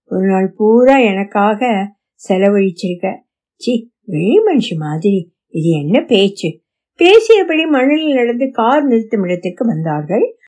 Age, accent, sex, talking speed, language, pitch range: 60-79, native, female, 70 wpm, Tamil, 175-240 Hz